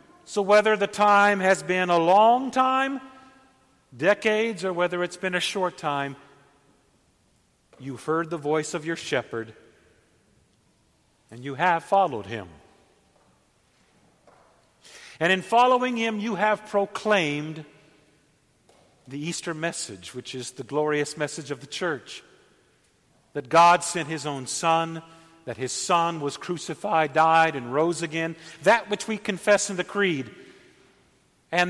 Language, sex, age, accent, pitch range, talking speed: English, male, 50-69, American, 140-195 Hz, 135 wpm